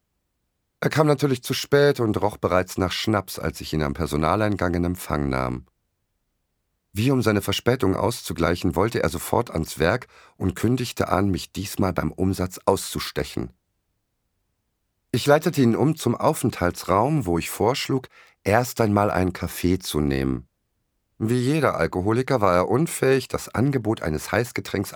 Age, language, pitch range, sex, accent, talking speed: 50-69, German, 85-115 Hz, male, German, 145 wpm